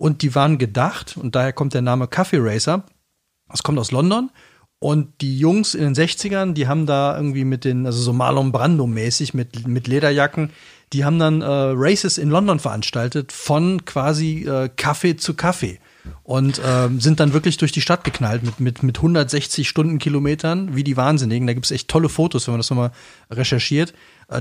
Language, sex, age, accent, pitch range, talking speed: German, male, 40-59, German, 130-160 Hz, 190 wpm